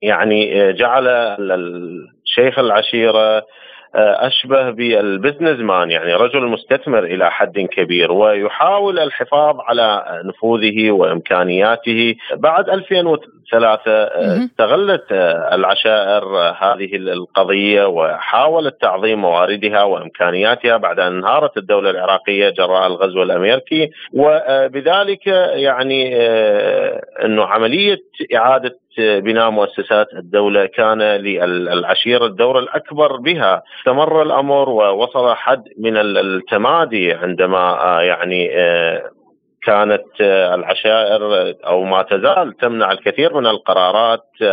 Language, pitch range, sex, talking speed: Arabic, 105-145 Hz, male, 90 wpm